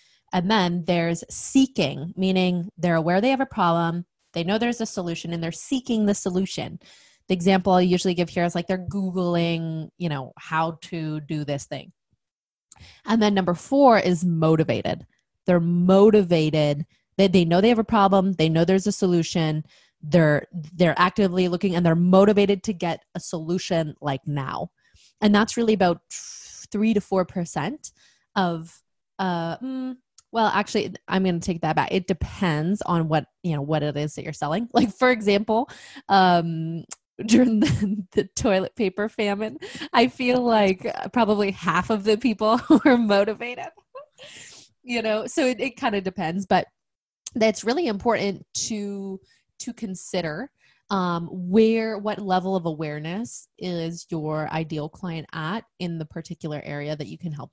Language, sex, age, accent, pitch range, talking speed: English, female, 20-39, American, 165-215 Hz, 165 wpm